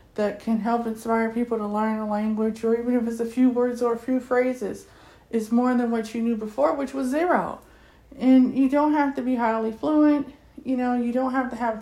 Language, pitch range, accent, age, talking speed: English, 220-260 Hz, American, 40-59, 230 wpm